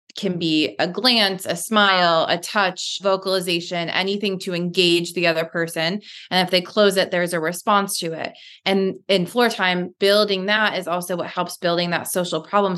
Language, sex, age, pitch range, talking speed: English, female, 20-39, 170-195 Hz, 185 wpm